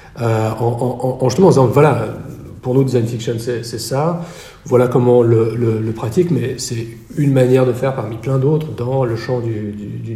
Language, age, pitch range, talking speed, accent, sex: French, 40-59, 115-135 Hz, 225 wpm, French, male